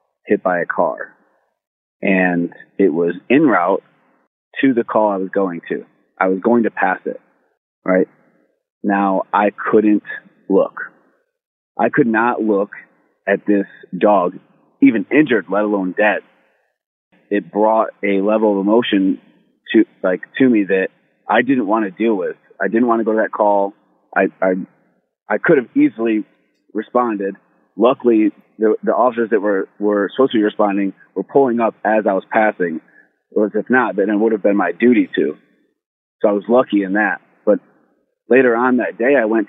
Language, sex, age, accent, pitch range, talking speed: English, male, 30-49, American, 100-115 Hz, 175 wpm